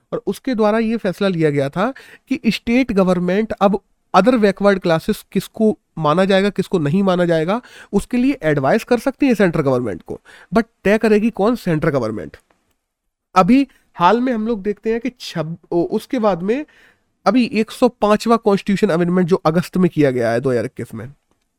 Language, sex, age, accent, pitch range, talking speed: Hindi, male, 30-49, native, 170-230 Hz, 170 wpm